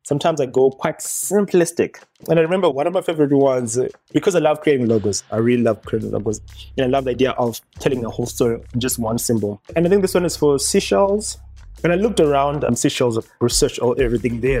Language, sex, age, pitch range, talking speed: English, male, 20-39, 115-155 Hz, 230 wpm